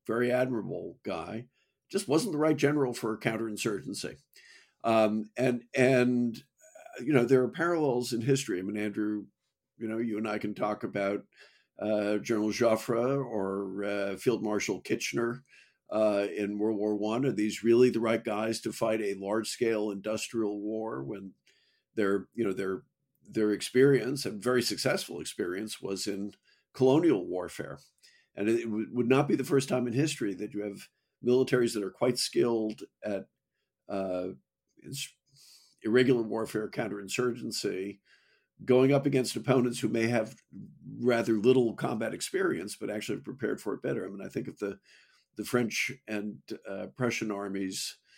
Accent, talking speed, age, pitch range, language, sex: American, 155 wpm, 50-69, 105-125 Hz, English, male